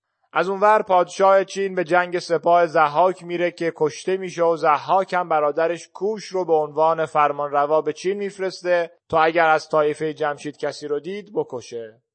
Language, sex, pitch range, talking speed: Persian, male, 145-180 Hz, 165 wpm